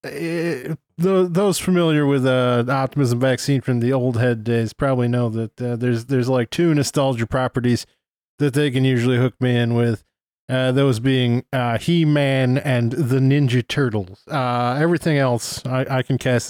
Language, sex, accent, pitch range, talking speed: English, male, American, 120-145 Hz, 165 wpm